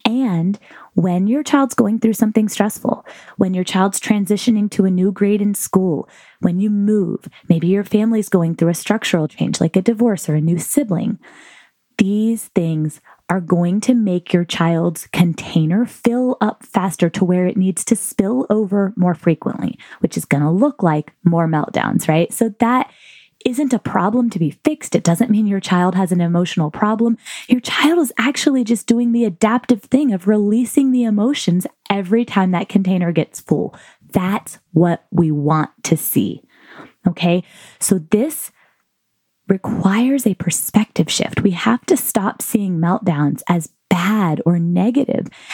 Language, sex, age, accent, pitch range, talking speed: English, female, 20-39, American, 175-235 Hz, 165 wpm